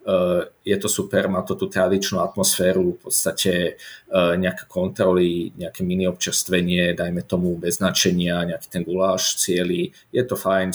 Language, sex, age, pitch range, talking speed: Slovak, male, 30-49, 90-100 Hz, 150 wpm